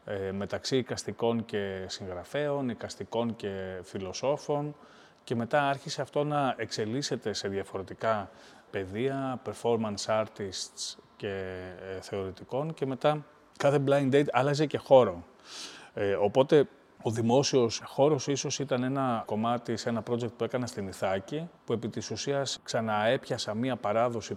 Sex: male